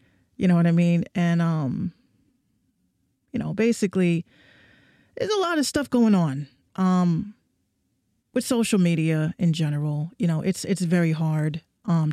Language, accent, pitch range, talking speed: English, American, 160-195 Hz, 150 wpm